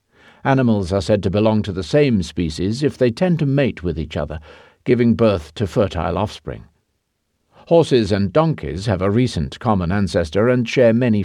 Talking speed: 175 wpm